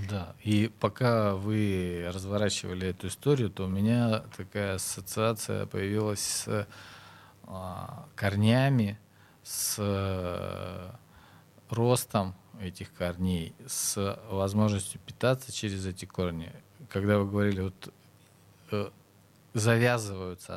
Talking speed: 95 wpm